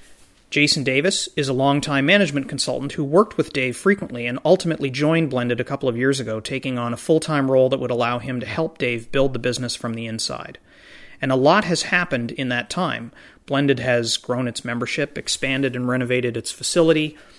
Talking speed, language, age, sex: 195 wpm, English, 30-49, male